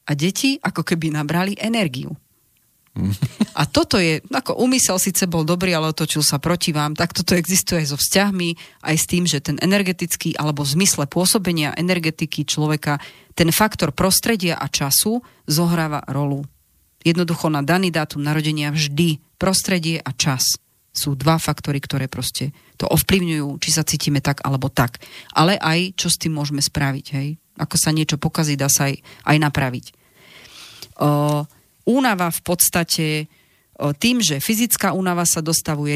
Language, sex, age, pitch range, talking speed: Slovak, female, 30-49, 145-185 Hz, 155 wpm